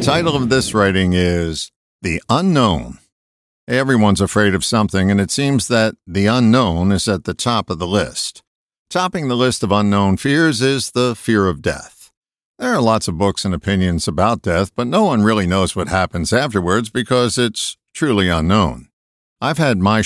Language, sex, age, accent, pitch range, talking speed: English, male, 60-79, American, 95-125 Hz, 180 wpm